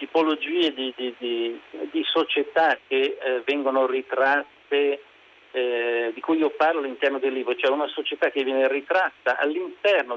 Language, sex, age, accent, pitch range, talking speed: Italian, male, 50-69, native, 130-220 Hz, 150 wpm